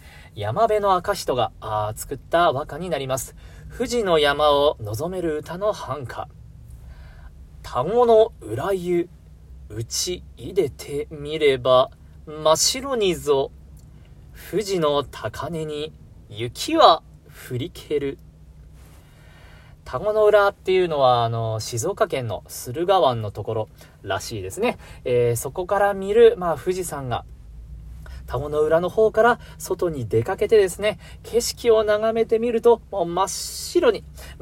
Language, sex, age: Japanese, male, 40-59